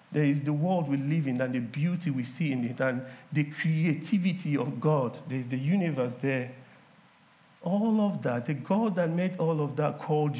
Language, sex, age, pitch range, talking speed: English, male, 50-69, 135-175 Hz, 200 wpm